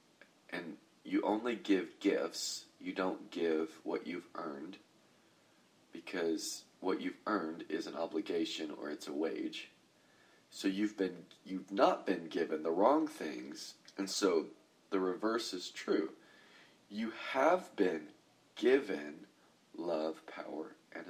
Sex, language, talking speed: male, English, 130 wpm